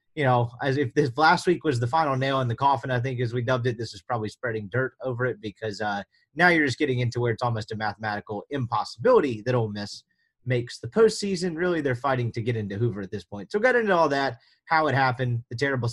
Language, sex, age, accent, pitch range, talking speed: English, male, 30-49, American, 115-135 Hz, 250 wpm